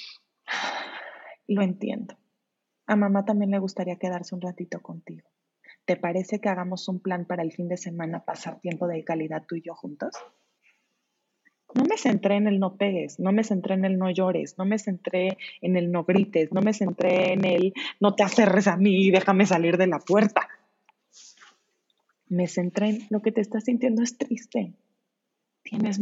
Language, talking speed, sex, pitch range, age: Spanish, 180 wpm, female, 185-225 Hz, 30-49